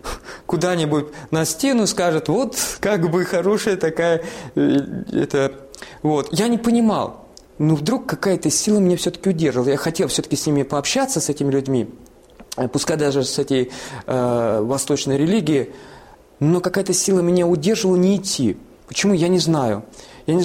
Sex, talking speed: male, 145 wpm